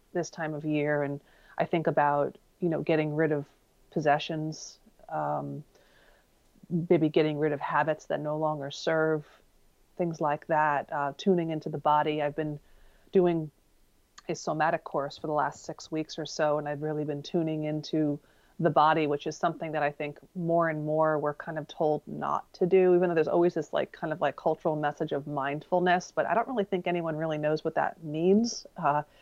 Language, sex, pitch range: English, female, 150-170 Hz